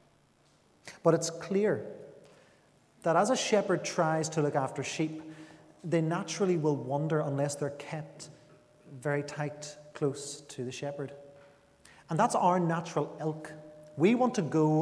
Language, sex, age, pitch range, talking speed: English, male, 30-49, 130-155 Hz, 140 wpm